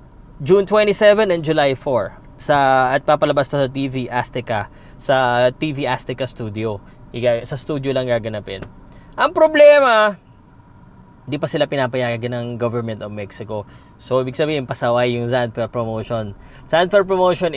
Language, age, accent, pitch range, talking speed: Filipino, 20-39, native, 125-180 Hz, 135 wpm